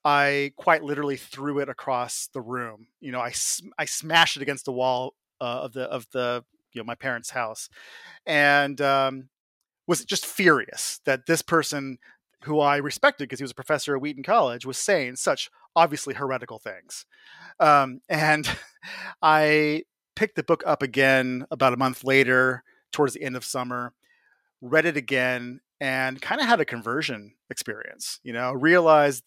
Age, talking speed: 30-49, 170 wpm